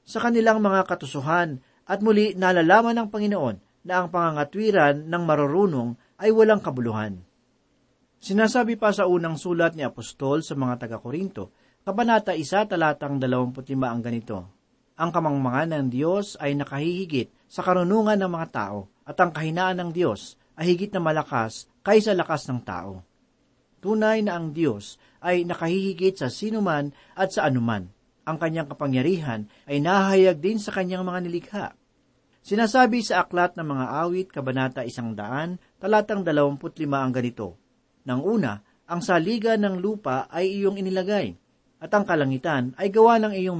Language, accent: Filipino, native